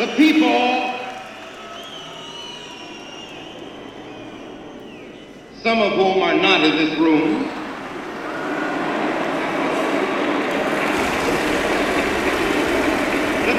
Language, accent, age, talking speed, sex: English, American, 60-79, 50 wpm, male